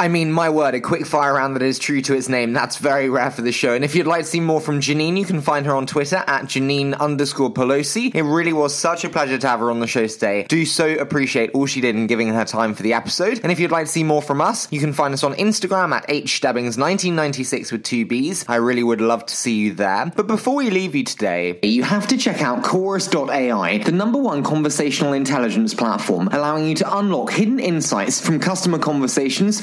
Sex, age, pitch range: male, 20-39, 135-195 Hz